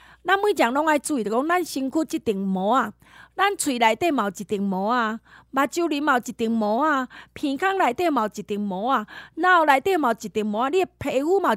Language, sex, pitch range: Chinese, female, 220-315 Hz